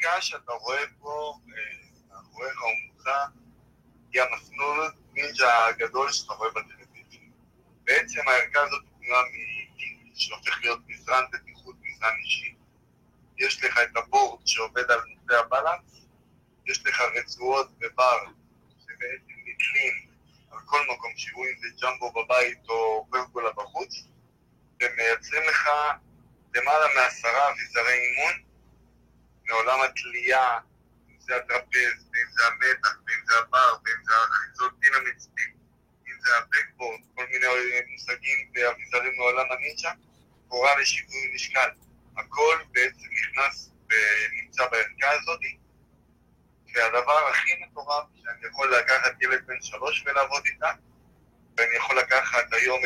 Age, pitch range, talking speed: 60-79, 115-145 Hz, 120 wpm